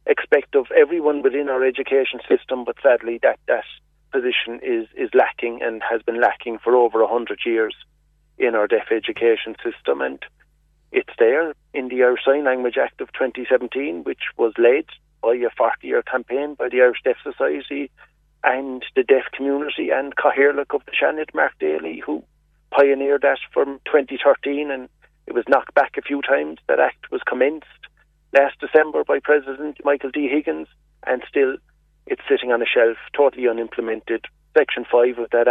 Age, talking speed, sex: 40-59, 170 wpm, male